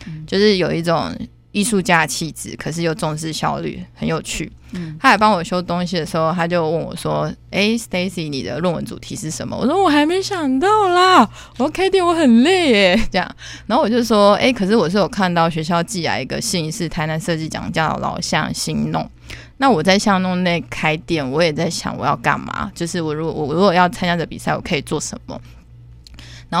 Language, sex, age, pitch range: Chinese, female, 20-39, 155-185 Hz